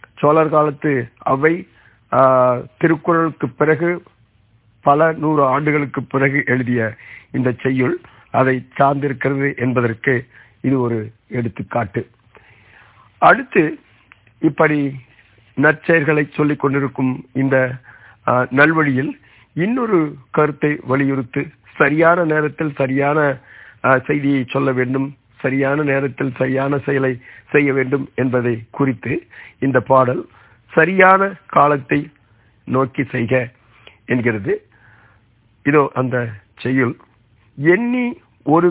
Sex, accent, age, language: male, native, 50-69, Tamil